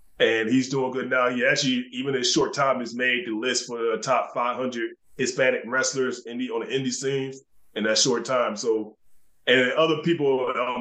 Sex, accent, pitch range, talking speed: male, American, 125-155 Hz, 205 wpm